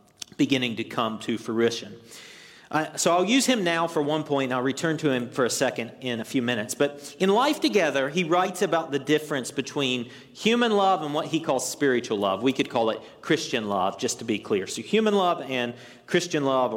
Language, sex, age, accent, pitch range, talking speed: English, male, 40-59, American, 120-175 Hz, 215 wpm